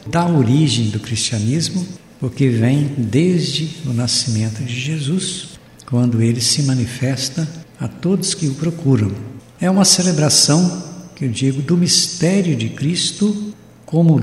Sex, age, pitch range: male, 60-79, 120-165 Hz